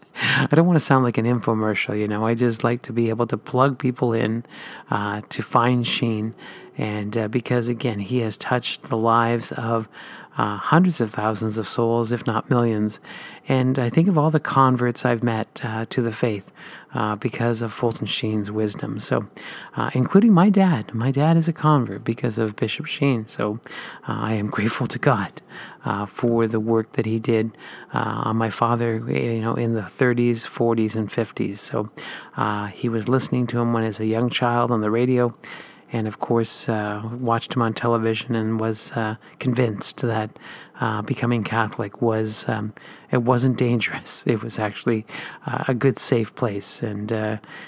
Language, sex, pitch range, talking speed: English, male, 110-125 Hz, 190 wpm